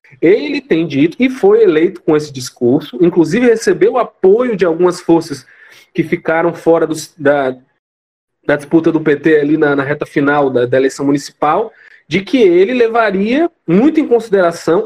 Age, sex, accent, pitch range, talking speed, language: 20-39, male, Brazilian, 160-210 Hz, 160 wpm, Portuguese